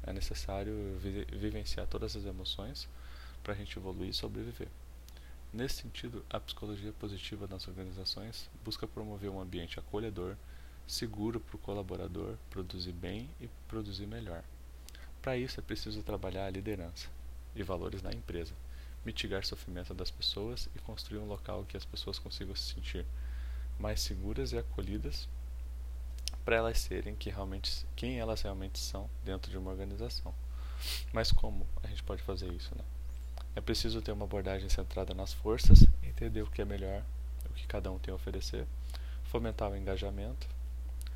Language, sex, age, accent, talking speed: Kannada, male, 20-39, Brazilian, 155 wpm